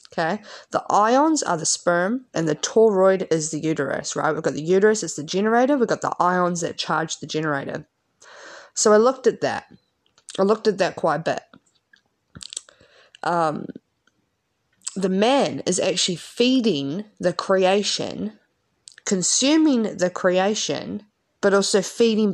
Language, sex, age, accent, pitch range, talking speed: English, female, 20-39, Australian, 165-215 Hz, 145 wpm